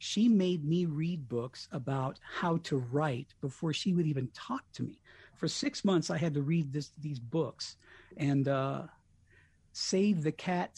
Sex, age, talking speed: male, 50-69, 165 wpm